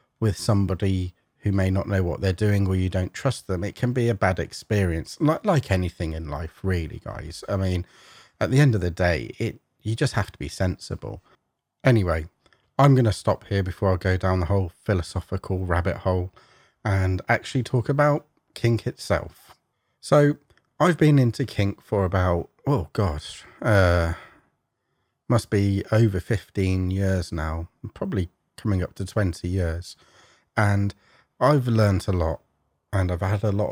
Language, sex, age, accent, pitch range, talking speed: English, male, 30-49, British, 90-115 Hz, 165 wpm